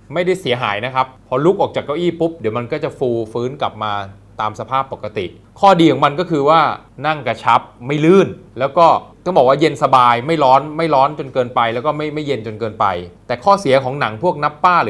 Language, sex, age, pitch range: Thai, male, 20-39, 120-165 Hz